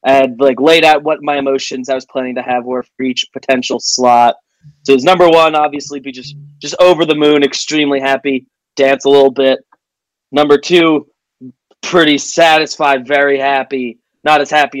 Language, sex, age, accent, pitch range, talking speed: English, male, 20-39, American, 125-145 Hz, 175 wpm